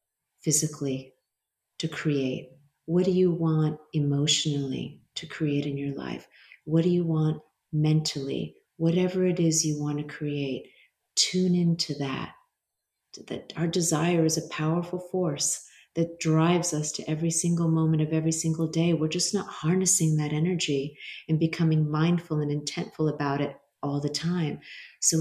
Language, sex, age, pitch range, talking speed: English, female, 40-59, 145-165 Hz, 150 wpm